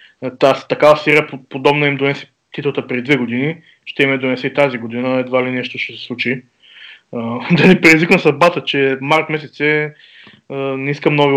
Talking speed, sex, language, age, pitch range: 190 wpm, male, Bulgarian, 20-39, 130-155 Hz